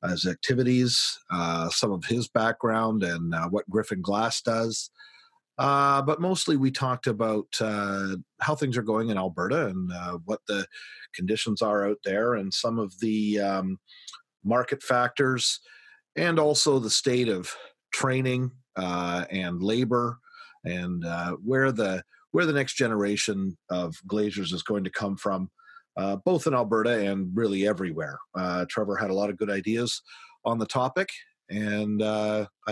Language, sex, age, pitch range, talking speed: English, male, 40-59, 95-135 Hz, 155 wpm